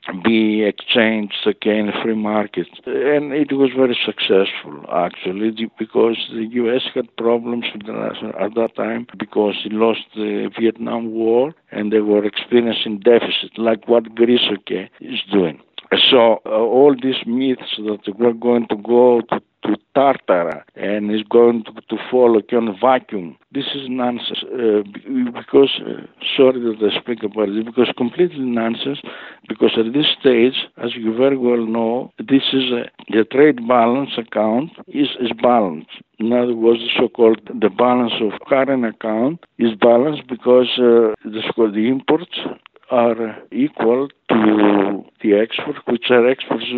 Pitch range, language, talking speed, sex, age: 110-140 Hz, English, 155 wpm, male, 60-79